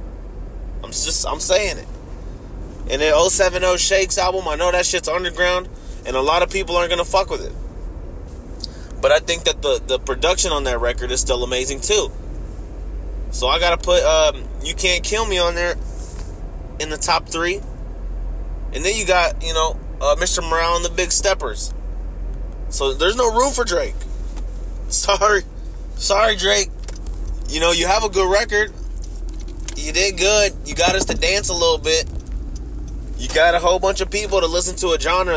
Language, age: English, 20-39